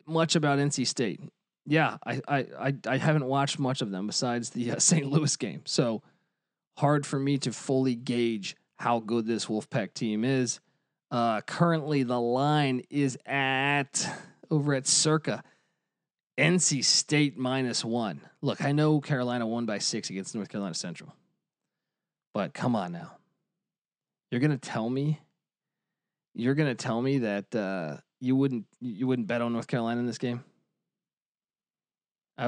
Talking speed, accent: 155 wpm, American